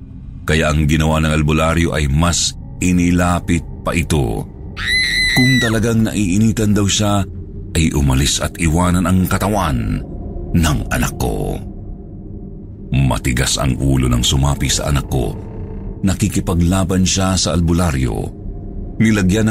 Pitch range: 80-105 Hz